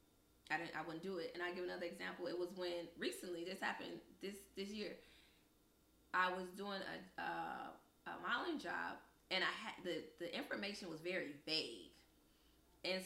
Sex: female